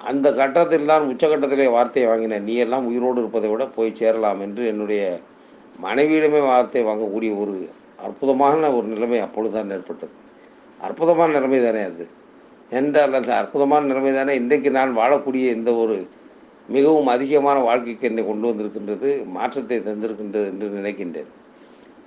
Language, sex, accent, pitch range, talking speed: Tamil, male, native, 115-145 Hz, 130 wpm